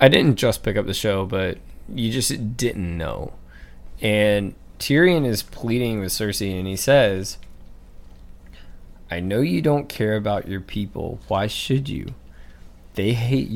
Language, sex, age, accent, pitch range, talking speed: English, male, 20-39, American, 90-140 Hz, 150 wpm